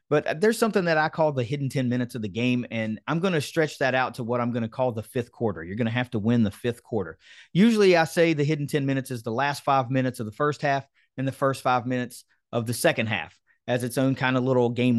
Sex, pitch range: male, 120-155 Hz